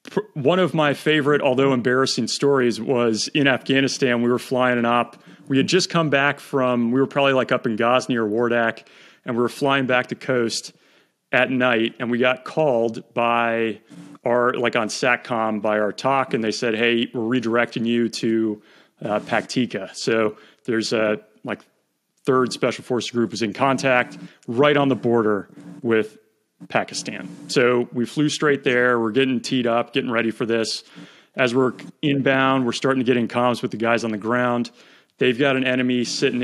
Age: 30-49